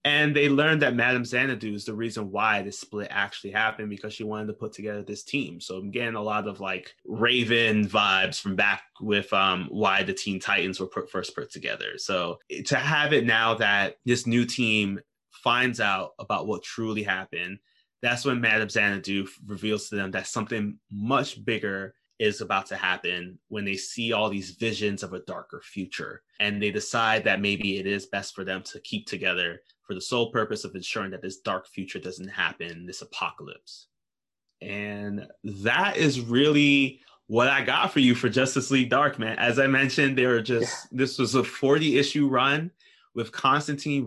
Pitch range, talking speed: 100-125 Hz, 190 wpm